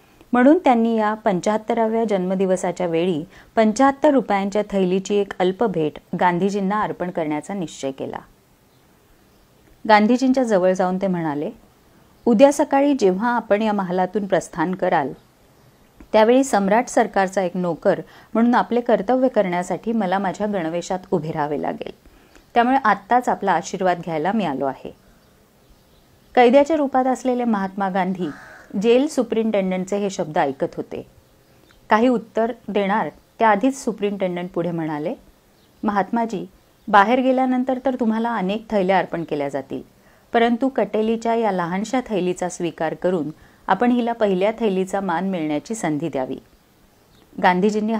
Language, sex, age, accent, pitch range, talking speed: Marathi, female, 30-49, native, 175-230 Hz, 105 wpm